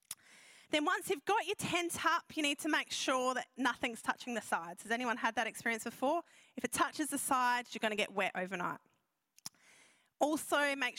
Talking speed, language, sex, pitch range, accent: 195 wpm, English, female, 230-295 Hz, Australian